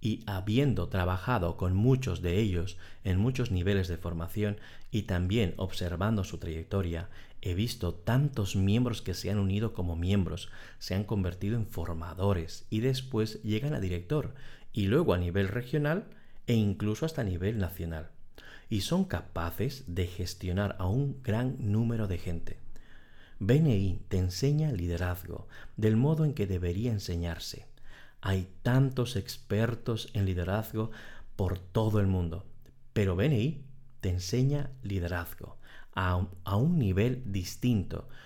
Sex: male